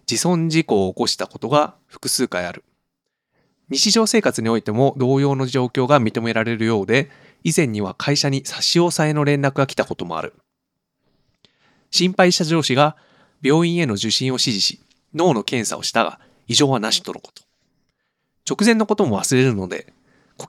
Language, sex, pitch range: Japanese, male, 120-165 Hz